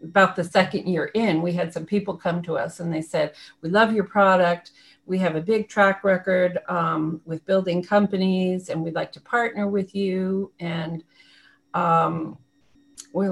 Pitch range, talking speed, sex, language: 170-205 Hz, 175 wpm, female, English